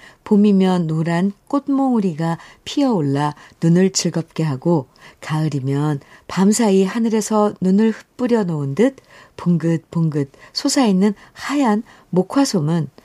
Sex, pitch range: female, 150-210 Hz